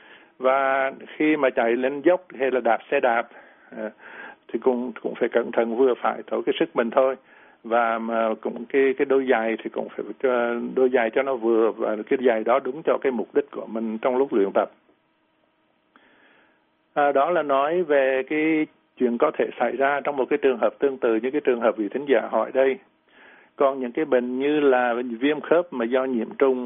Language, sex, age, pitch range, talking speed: Vietnamese, male, 60-79, 120-140 Hz, 210 wpm